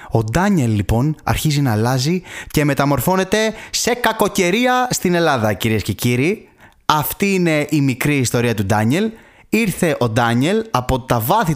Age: 20-39